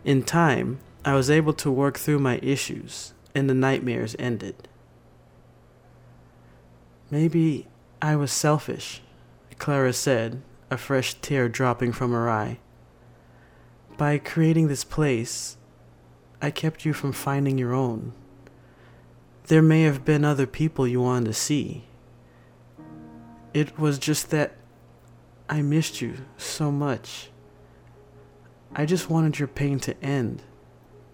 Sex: male